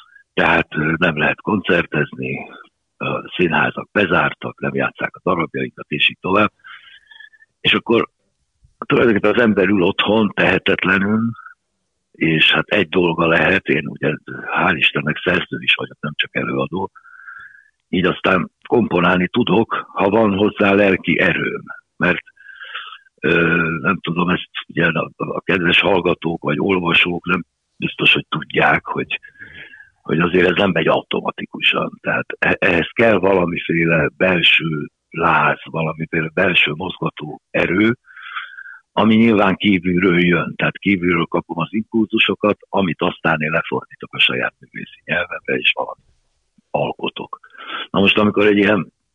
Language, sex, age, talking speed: Hungarian, male, 60-79, 125 wpm